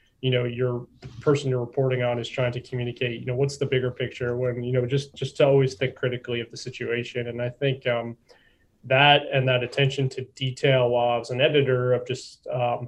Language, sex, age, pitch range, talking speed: English, male, 20-39, 125-140 Hz, 220 wpm